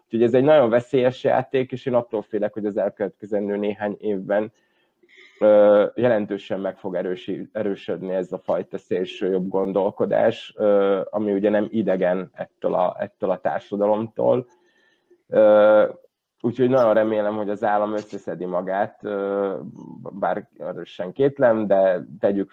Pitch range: 100-115 Hz